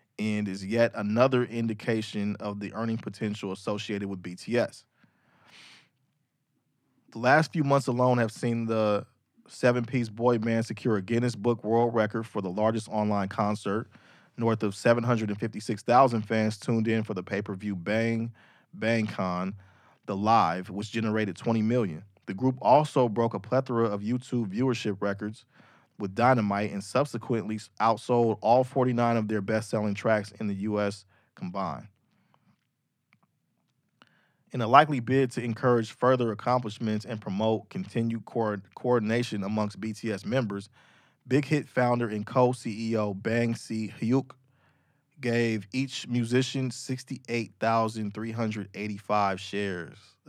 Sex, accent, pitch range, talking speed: male, American, 105-120 Hz, 125 wpm